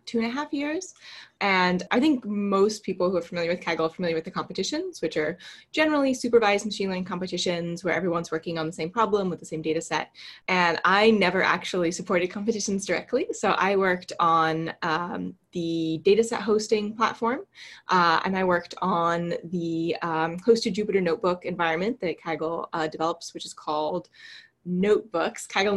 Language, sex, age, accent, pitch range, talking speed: English, female, 20-39, American, 170-215 Hz, 175 wpm